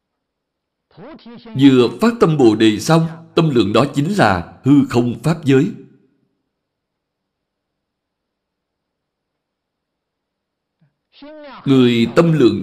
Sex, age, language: male, 60-79, Vietnamese